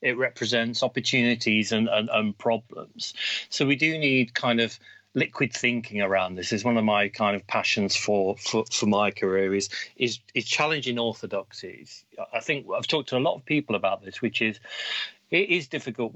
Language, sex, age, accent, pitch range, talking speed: English, male, 40-59, British, 105-130 Hz, 185 wpm